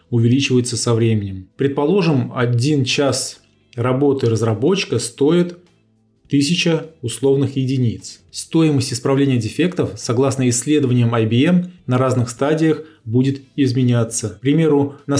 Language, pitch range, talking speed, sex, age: Russian, 115-140 Hz, 105 wpm, male, 20-39